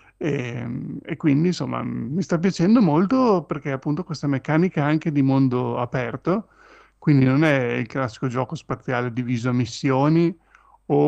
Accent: native